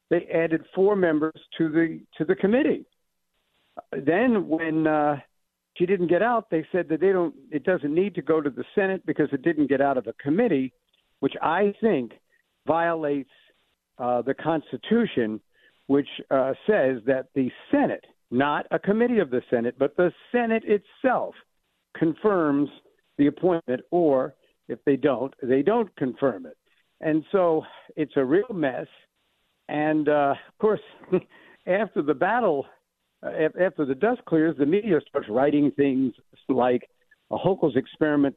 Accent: American